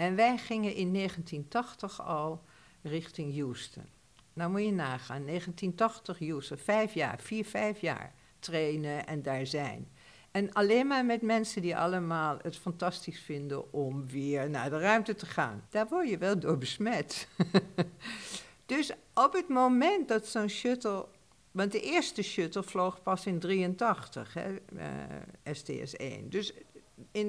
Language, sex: Dutch, female